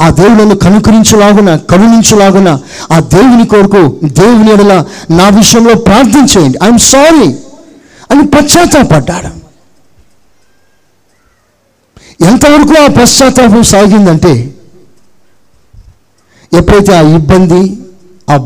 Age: 50-69